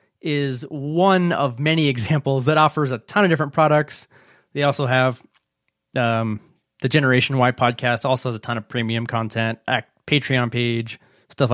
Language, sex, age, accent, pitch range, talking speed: English, male, 20-39, American, 125-155 Hz, 155 wpm